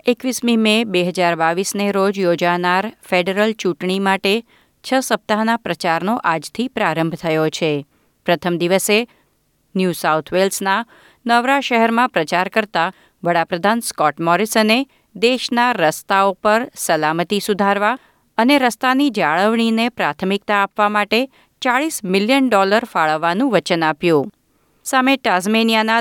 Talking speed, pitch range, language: 110 wpm, 175-230 Hz, Gujarati